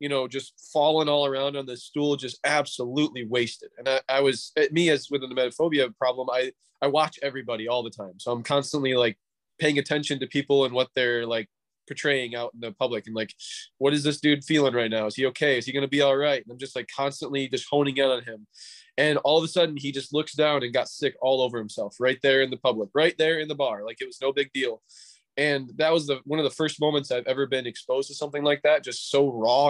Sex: male